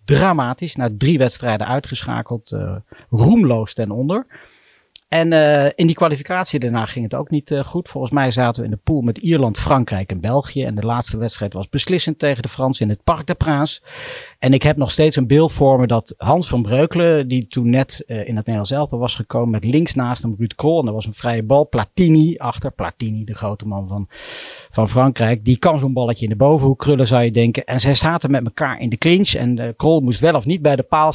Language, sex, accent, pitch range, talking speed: Dutch, male, Dutch, 120-155 Hz, 230 wpm